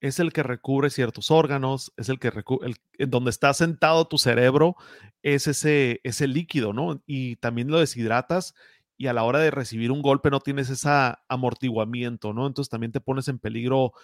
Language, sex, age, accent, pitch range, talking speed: Spanish, male, 30-49, Mexican, 125-150 Hz, 190 wpm